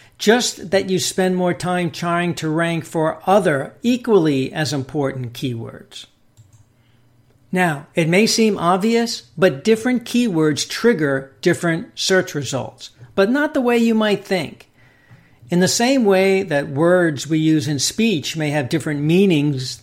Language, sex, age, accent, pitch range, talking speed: English, male, 60-79, American, 135-190 Hz, 145 wpm